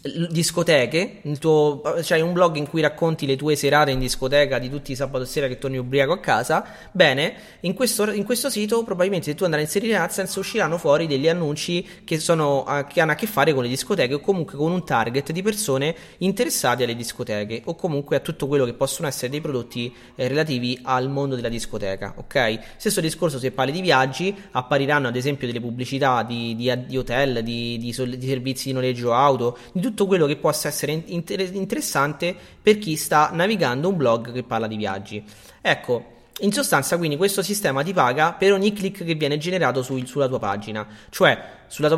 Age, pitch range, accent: 30-49, 125-170 Hz, native